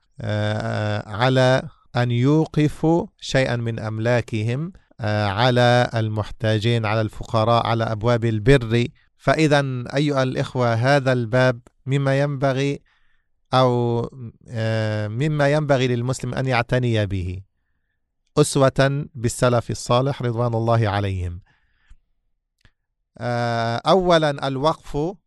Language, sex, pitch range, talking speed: English, male, 115-140 Hz, 85 wpm